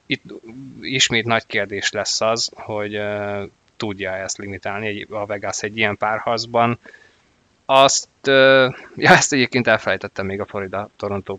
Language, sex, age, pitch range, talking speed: Hungarian, male, 20-39, 100-115 Hz, 135 wpm